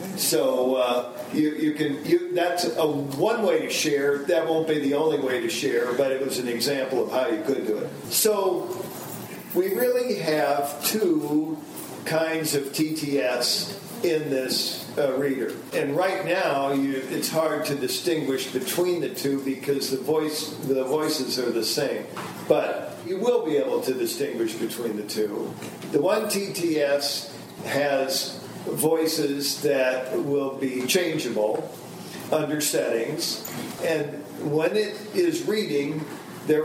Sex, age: male, 50-69